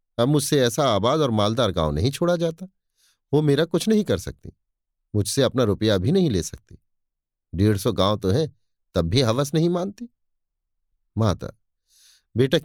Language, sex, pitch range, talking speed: Hindi, male, 95-140 Hz, 160 wpm